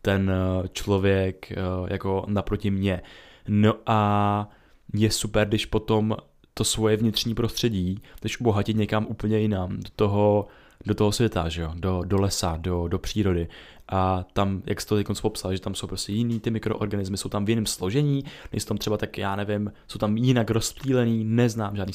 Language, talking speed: Czech, 175 wpm